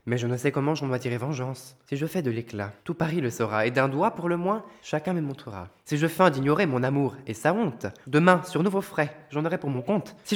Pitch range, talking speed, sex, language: 125-165 Hz, 265 wpm, male, German